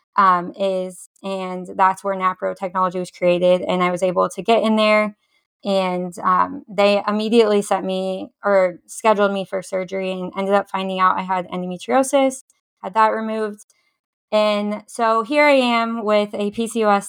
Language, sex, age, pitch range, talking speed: English, female, 20-39, 185-215 Hz, 165 wpm